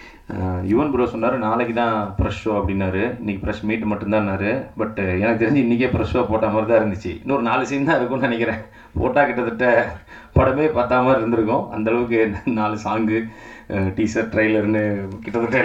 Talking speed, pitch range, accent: 145 wpm, 105-125 Hz, native